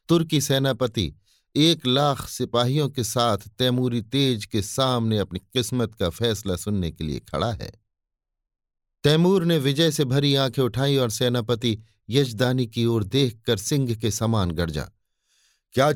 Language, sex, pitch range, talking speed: Hindi, male, 100-140 Hz, 145 wpm